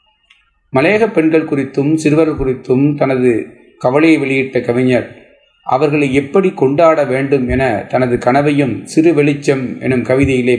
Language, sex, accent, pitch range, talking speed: Tamil, male, native, 125-155 Hz, 115 wpm